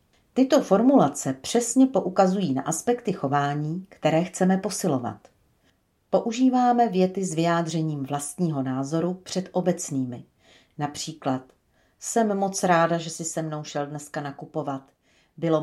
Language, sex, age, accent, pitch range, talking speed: Czech, female, 40-59, native, 130-185 Hz, 115 wpm